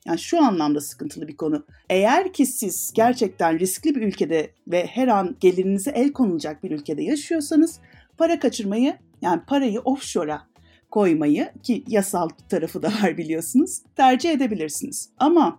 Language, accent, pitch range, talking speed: Turkish, native, 180-295 Hz, 140 wpm